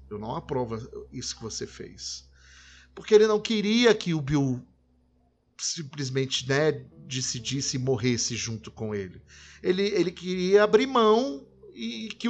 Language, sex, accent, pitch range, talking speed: Portuguese, male, Brazilian, 125-180 Hz, 140 wpm